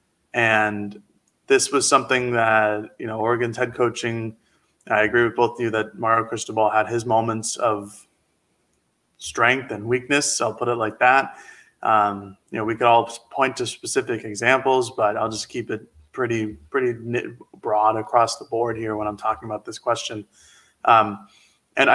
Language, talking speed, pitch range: English, 170 wpm, 110-135 Hz